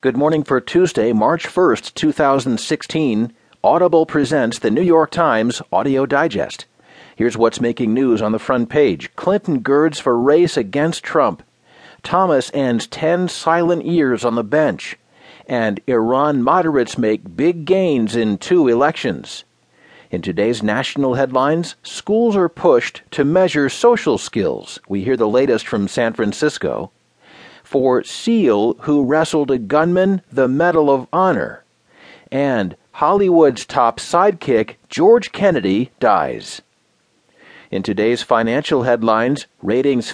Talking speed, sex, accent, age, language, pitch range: 130 wpm, male, American, 50-69, English, 120-175 Hz